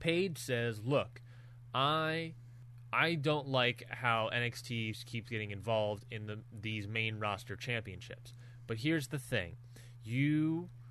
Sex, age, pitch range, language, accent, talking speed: male, 20-39, 115-130 Hz, English, American, 125 wpm